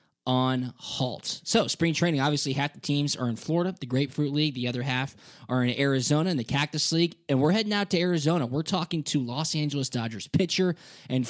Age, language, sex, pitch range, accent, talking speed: 20-39, English, male, 125-150 Hz, American, 205 wpm